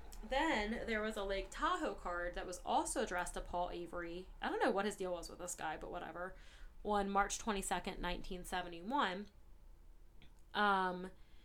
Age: 20-39